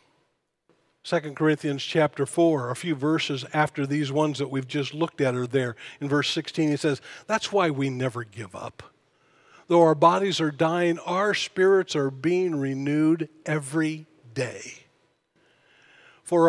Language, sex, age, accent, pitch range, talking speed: English, male, 50-69, American, 135-160 Hz, 150 wpm